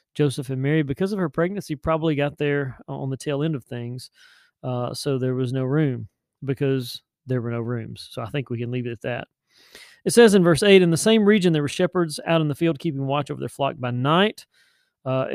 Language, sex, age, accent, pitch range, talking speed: English, male, 40-59, American, 130-155 Hz, 235 wpm